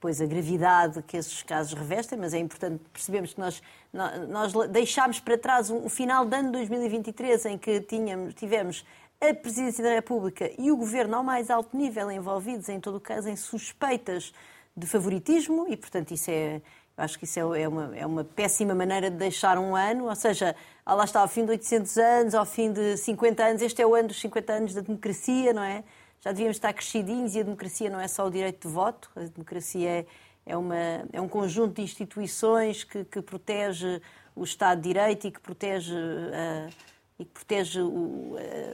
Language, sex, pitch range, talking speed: Portuguese, female, 175-225 Hz, 190 wpm